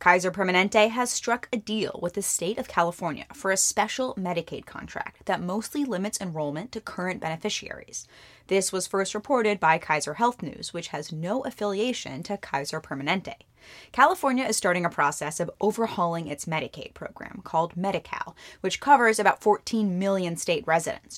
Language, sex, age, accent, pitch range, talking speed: English, female, 20-39, American, 170-220 Hz, 160 wpm